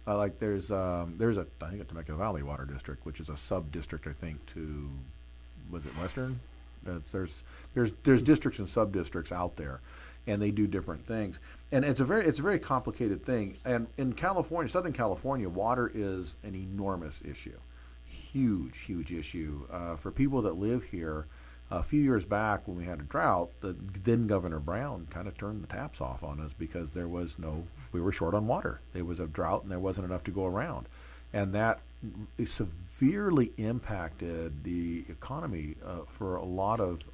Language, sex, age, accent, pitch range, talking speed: English, male, 50-69, American, 75-105 Hz, 200 wpm